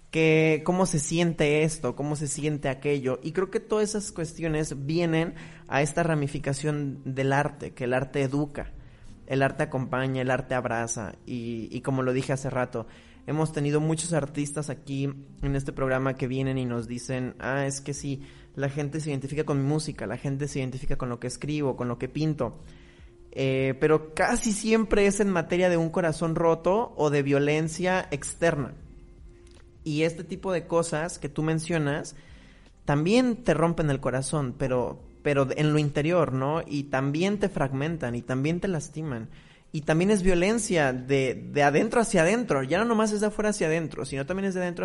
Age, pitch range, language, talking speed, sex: 20-39, 135-165 Hz, Spanish, 185 wpm, male